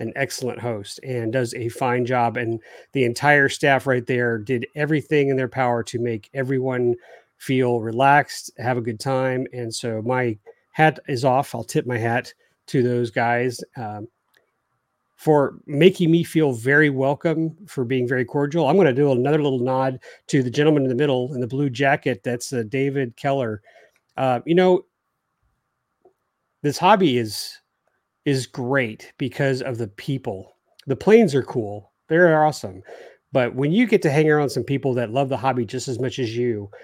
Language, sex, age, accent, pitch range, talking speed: English, male, 40-59, American, 120-145 Hz, 180 wpm